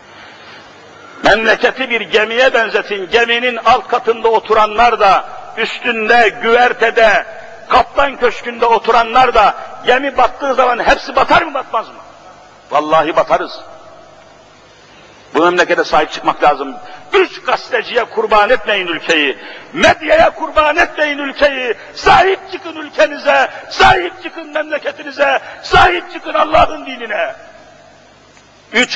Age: 50-69